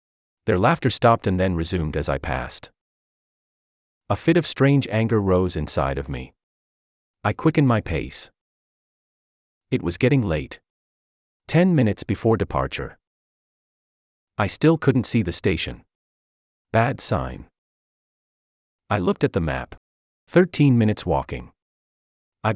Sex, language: male, English